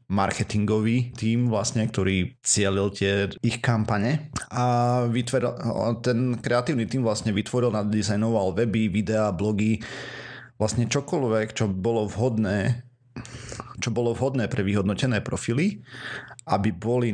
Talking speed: 115 wpm